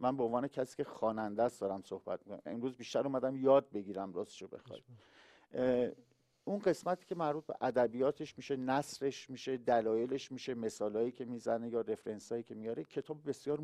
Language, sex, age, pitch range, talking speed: Persian, male, 50-69, 115-145 Hz, 165 wpm